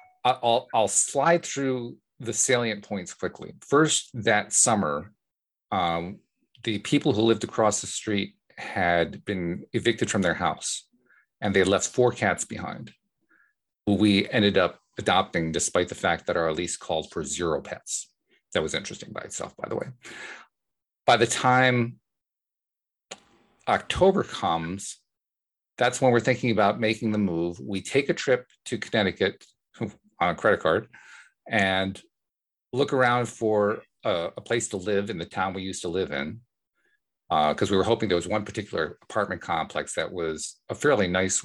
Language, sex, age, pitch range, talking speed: English, male, 40-59, 90-120 Hz, 160 wpm